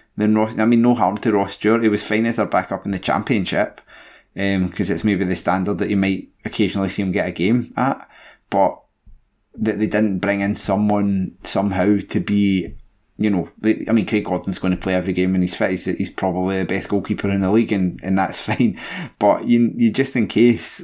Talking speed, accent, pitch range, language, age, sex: 220 wpm, British, 95-110 Hz, English, 20-39, male